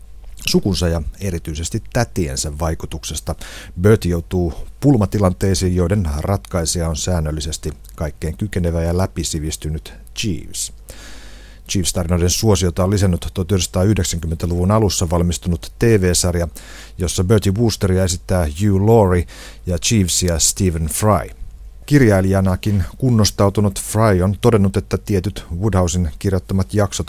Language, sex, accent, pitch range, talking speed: Finnish, male, native, 80-100 Hz, 100 wpm